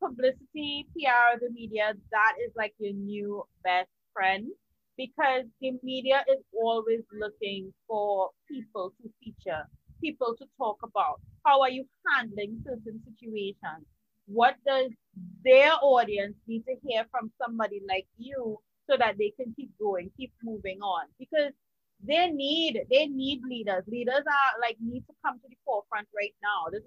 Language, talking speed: English, 155 wpm